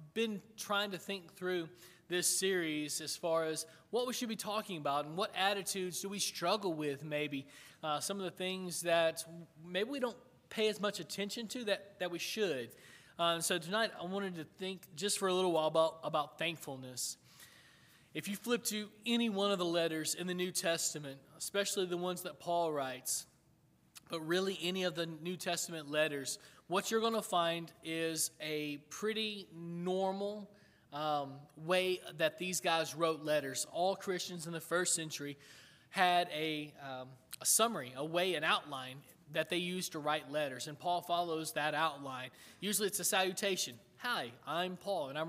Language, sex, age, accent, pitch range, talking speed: English, male, 20-39, American, 155-195 Hz, 180 wpm